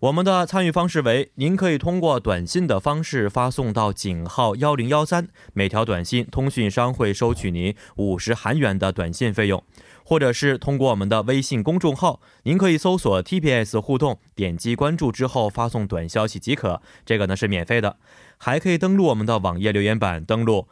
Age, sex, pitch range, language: 20-39, male, 105-150 Hz, Korean